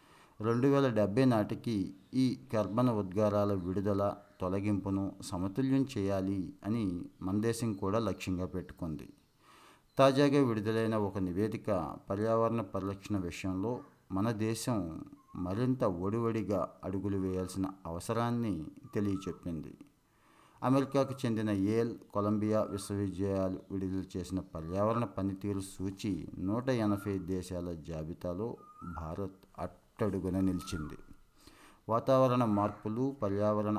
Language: Telugu